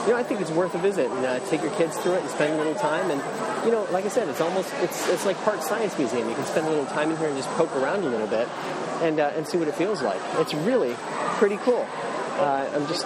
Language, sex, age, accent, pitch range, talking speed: English, male, 30-49, American, 130-185 Hz, 295 wpm